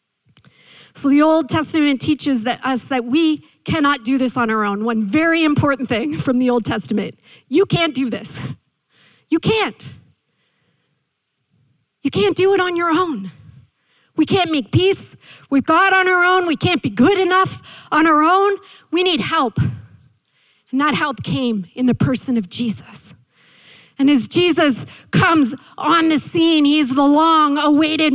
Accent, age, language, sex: American, 40-59, English, female